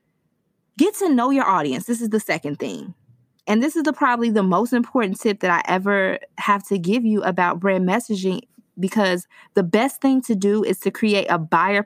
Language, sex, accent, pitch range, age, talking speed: English, female, American, 180-215 Hz, 20-39, 195 wpm